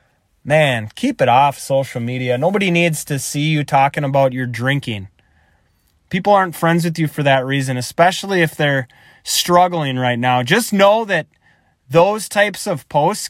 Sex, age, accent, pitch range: male, 20-39, American, 125-165 Hz